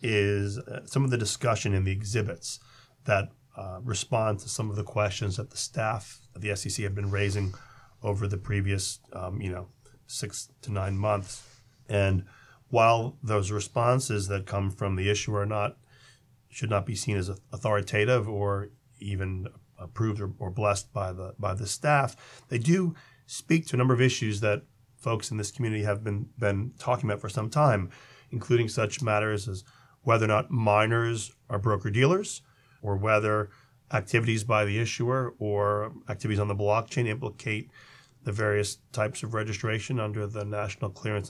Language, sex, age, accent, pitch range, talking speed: English, male, 30-49, American, 105-130 Hz, 165 wpm